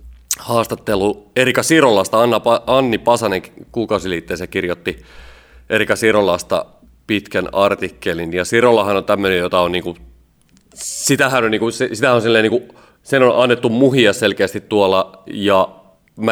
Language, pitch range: Finnish, 90-110 Hz